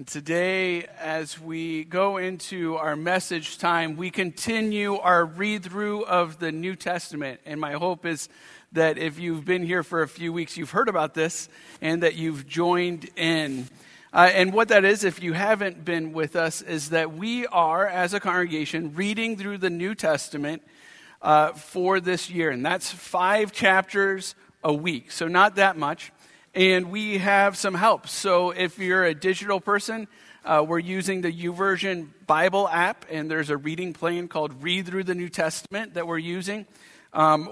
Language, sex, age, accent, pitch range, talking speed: English, male, 50-69, American, 160-190 Hz, 175 wpm